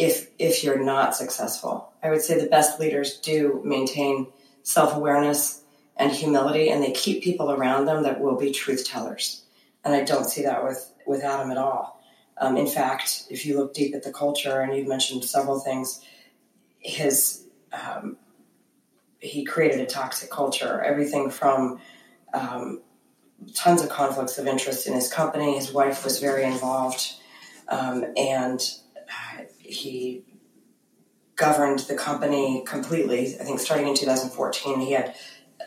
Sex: female